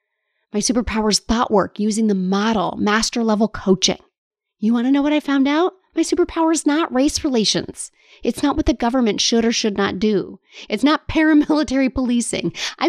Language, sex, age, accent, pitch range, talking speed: English, female, 30-49, American, 210-310 Hz, 185 wpm